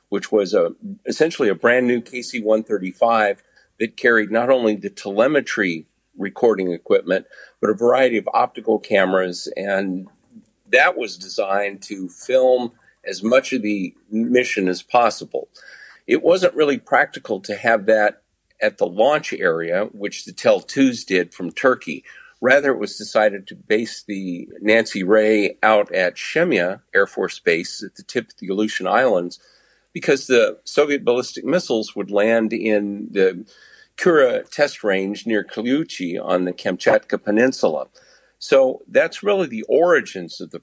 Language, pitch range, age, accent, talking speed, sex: English, 100-130 Hz, 50-69, American, 145 wpm, male